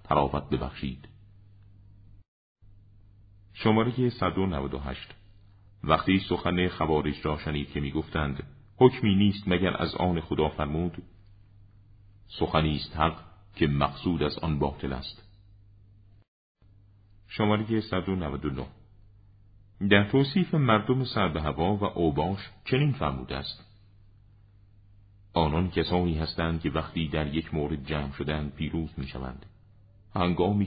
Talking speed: 110 wpm